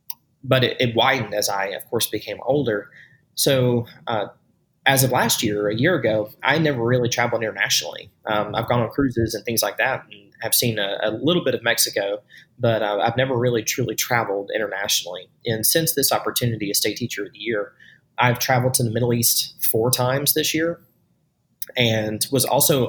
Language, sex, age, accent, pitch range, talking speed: English, male, 20-39, American, 110-130 Hz, 190 wpm